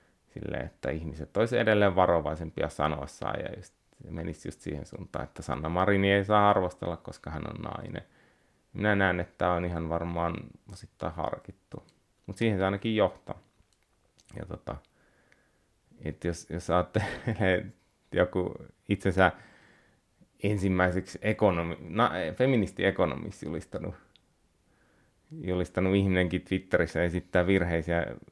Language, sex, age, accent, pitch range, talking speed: Finnish, male, 30-49, native, 80-95 Hz, 110 wpm